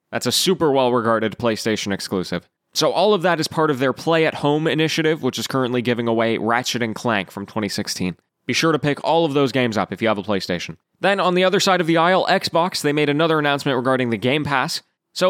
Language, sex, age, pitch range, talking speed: English, male, 20-39, 125-170 Hz, 230 wpm